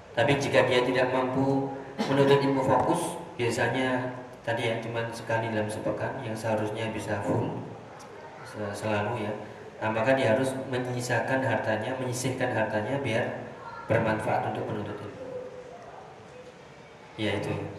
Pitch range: 110-135 Hz